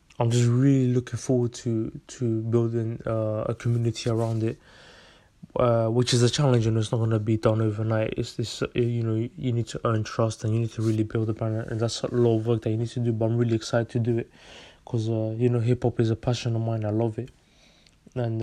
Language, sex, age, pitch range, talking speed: English, male, 20-39, 110-125 Hz, 250 wpm